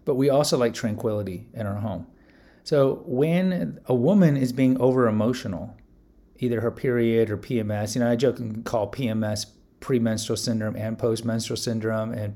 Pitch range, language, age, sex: 115-155 Hz, English, 30-49, male